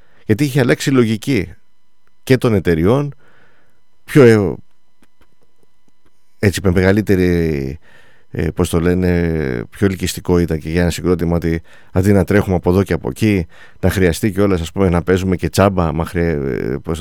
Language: English